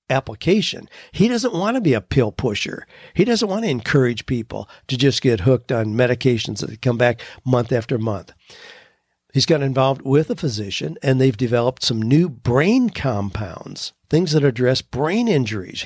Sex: male